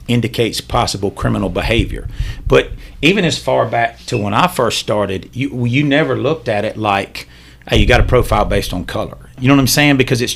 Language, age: English, 40-59